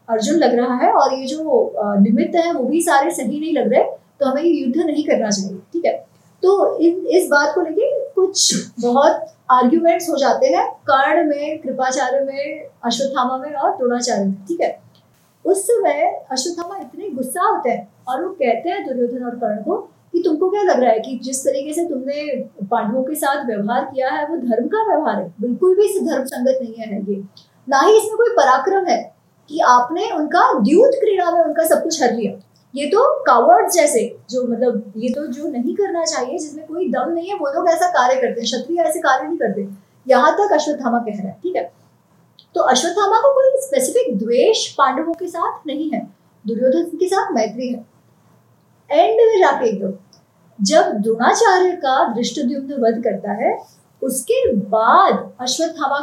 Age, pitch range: 30-49, 245-345 Hz